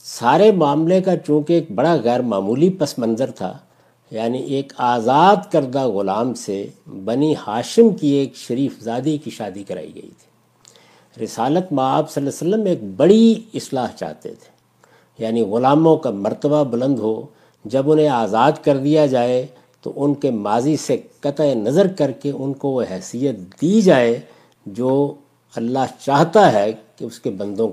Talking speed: 160 wpm